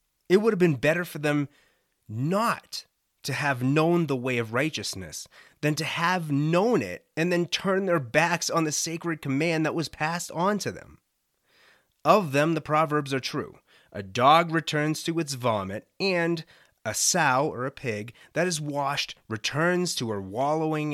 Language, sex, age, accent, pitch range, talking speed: English, male, 30-49, American, 125-175 Hz, 170 wpm